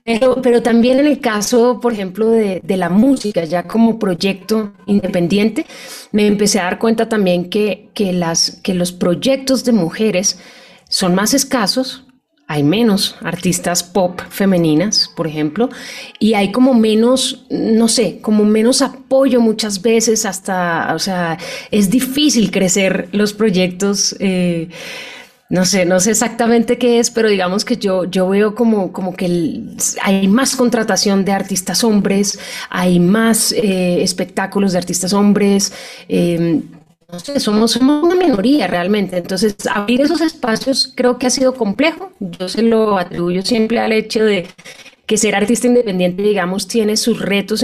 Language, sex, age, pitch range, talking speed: Spanish, female, 30-49, 185-240 Hz, 155 wpm